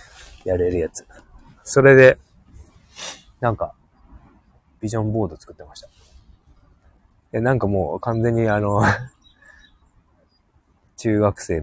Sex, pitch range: male, 85-115 Hz